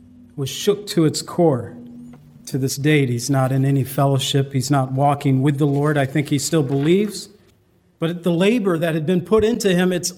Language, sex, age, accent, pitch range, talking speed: English, male, 50-69, American, 135-185 Hz, 200 wpm